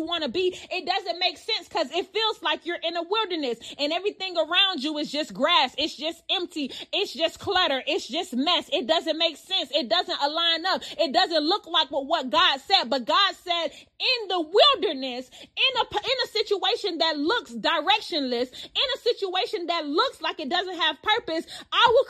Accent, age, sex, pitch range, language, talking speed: American, 30-49, female, 330-415 Hz, English, 200 wpm